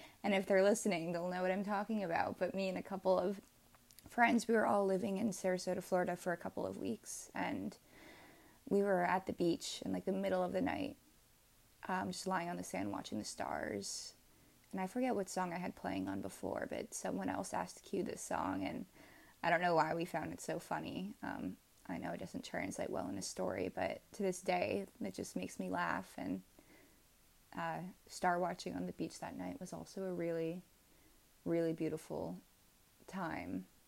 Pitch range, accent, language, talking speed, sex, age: 160-195 Hz, American, English, 200 wpm, female, 20-39